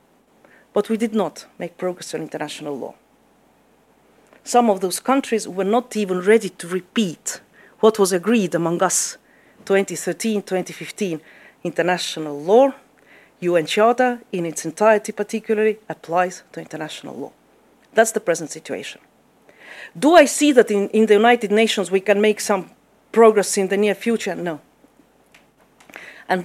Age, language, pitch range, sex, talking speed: 40-59, English, 180-230 Hz, female, 140 wpm